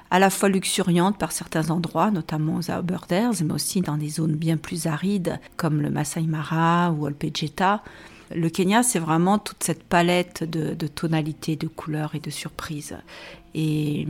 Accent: French